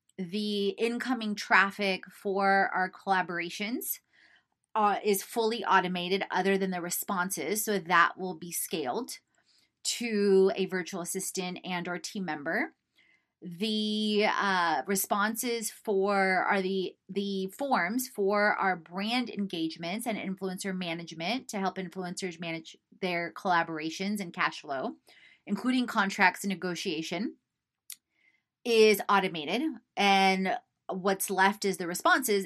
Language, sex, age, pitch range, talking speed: English, female, 30-49, 180-210 Hz, 115 wpm